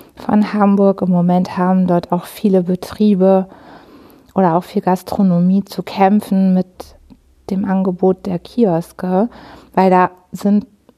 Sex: female